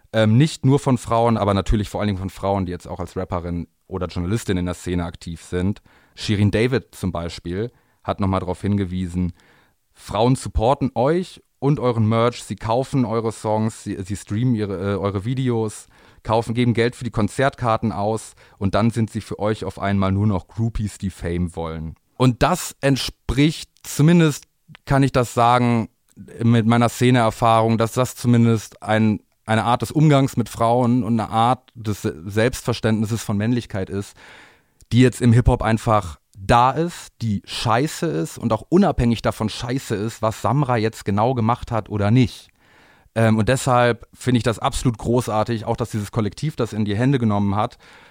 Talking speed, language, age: 175 wpm, German, 30-49